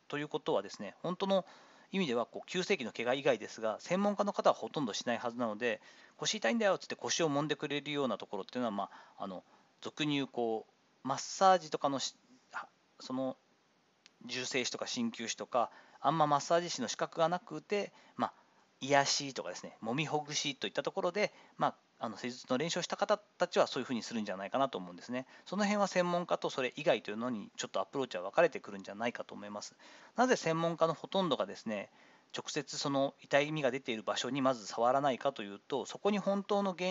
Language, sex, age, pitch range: Japanese, male, 40-59, 130-190 Hz